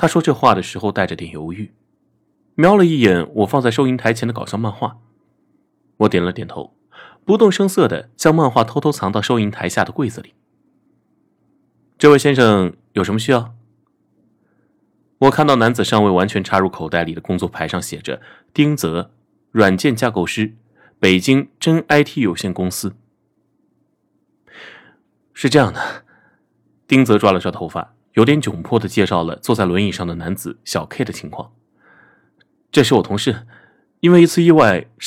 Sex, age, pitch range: male, 30-49, 100-155 Hz